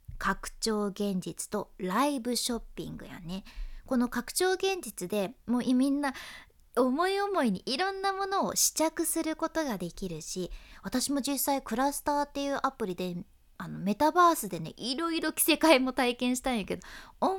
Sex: female